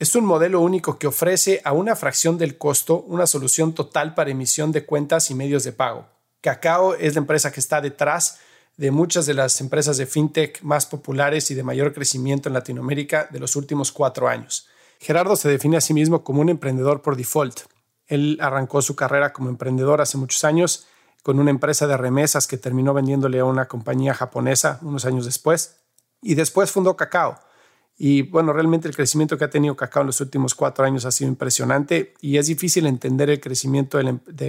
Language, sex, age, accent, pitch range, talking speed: Spanish, male, 40-59, Mexican, 135-155 Hz, 195 wpm